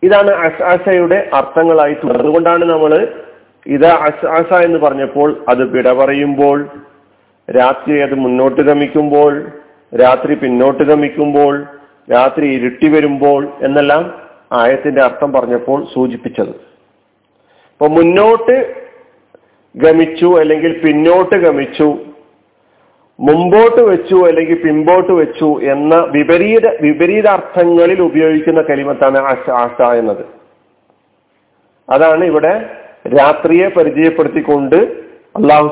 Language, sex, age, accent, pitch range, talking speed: Malayalam, male, 40-59, native, 145-185 Hz, 85 wpm